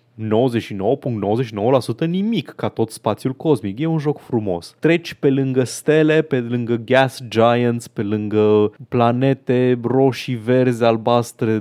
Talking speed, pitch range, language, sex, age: 125 wpm, 110-140 Hz, Romanian, male, 20-39